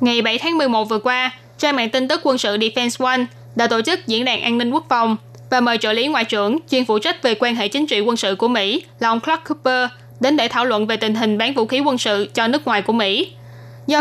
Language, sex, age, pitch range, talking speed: Vietnamese, female, 10-29, 220-260 Hz, 270 wpm